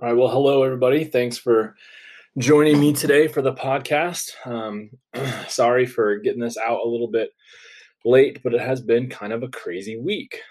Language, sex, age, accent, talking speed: English, male, 20-39, American, 185 wpm